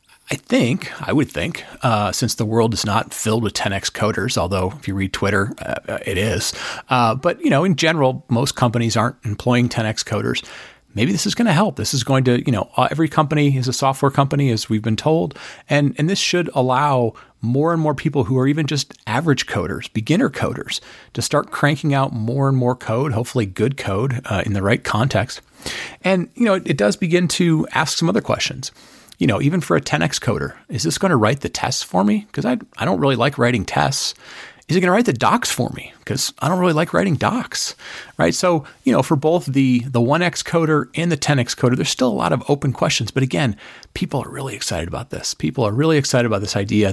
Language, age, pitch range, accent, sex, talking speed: English, 40-59, 110-150 Hz, American, male, 230 wpm